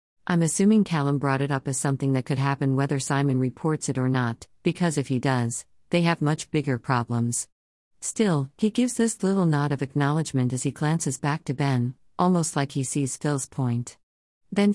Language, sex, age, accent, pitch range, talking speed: English, female, 50-69, American, 130-155 Hz, 190 wpm